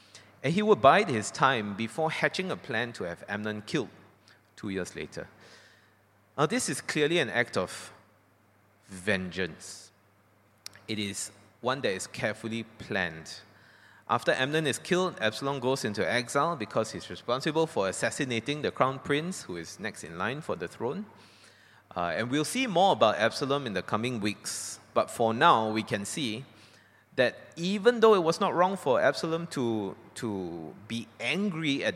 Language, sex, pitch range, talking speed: English, male, 100-140 Hz, 165 wpm